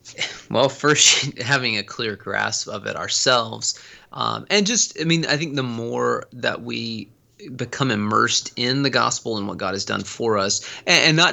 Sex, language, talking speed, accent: male, English, 185 wpm, American